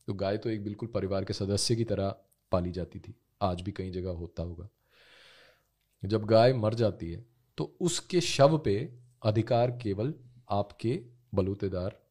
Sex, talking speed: male, 160 wpm